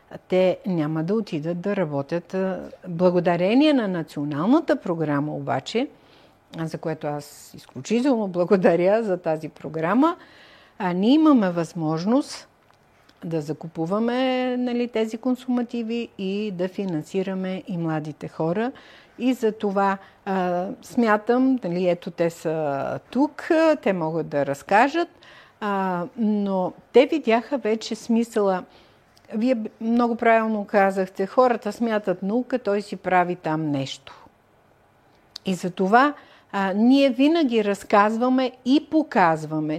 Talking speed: 105 wpm